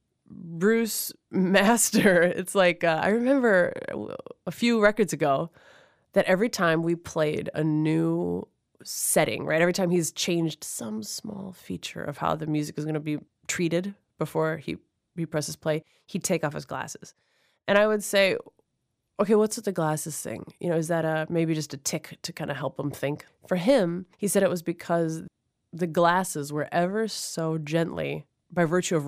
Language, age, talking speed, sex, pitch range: English, 20-39, 180 wpm, female, 155-185 Hz